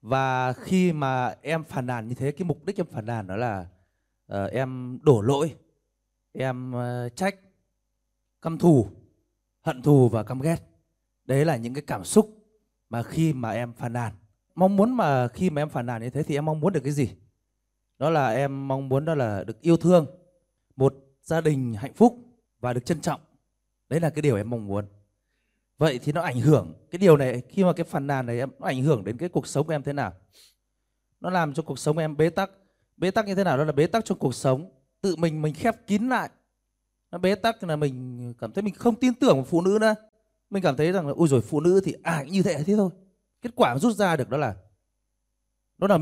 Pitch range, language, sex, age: 120-180 Hz, Vietnamese, male, 20-39